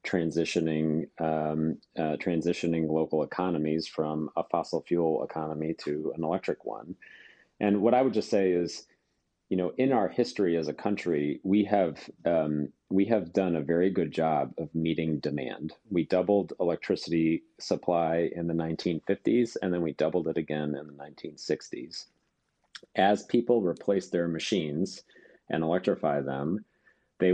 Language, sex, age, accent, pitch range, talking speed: English, male, 40-59, American, 80-90 Hz, 150 wpm